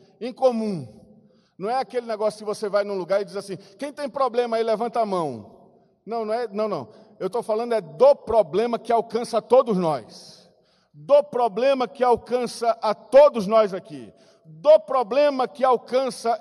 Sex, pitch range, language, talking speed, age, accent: male, 220-295 Hz, Portuguese, 180 wpm, 50-69, Brazilian